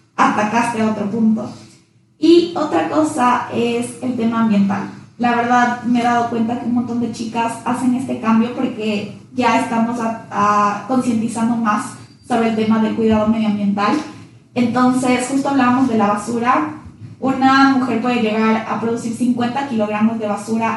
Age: 20-39